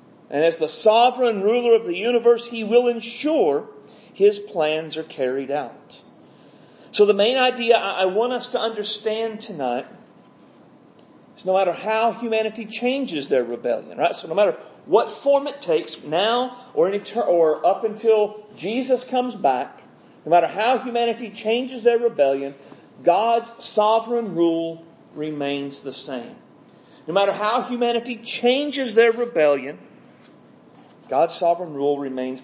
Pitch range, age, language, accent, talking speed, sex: 160-235 Hz, 40-59, English, American, 140 wpm, male